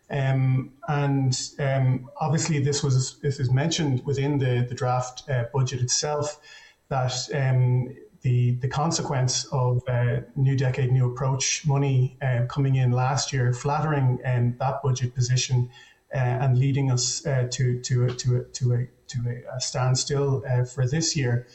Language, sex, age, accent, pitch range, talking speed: English, male, 30-49, Irish, 125-145 Hz, 165 wpm